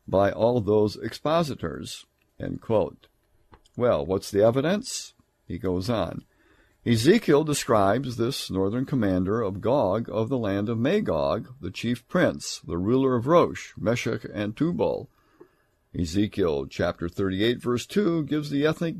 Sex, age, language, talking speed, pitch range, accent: male, 60-79, English, 135 wpm, 95-135 Hz, American